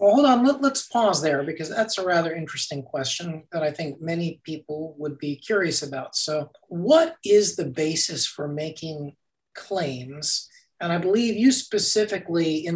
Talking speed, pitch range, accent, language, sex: 165 wpm, 155-200 Hz, American, English, male